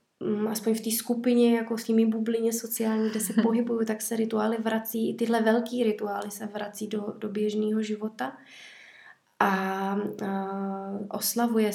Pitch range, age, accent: 205-220 Hz, 20-39, native